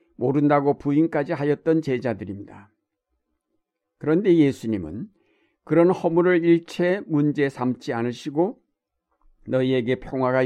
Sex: male